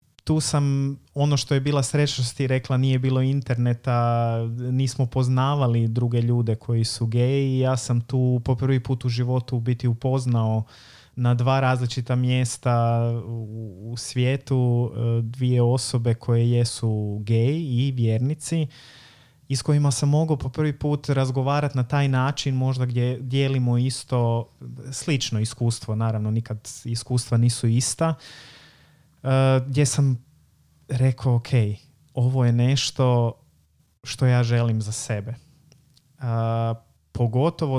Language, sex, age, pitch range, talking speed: Croatian, male, 30-49, 115-135 Hz, 120 wpm